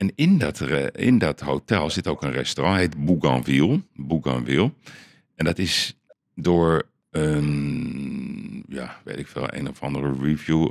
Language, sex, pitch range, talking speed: Dutch, male, 75-95 Hz, 145 wpm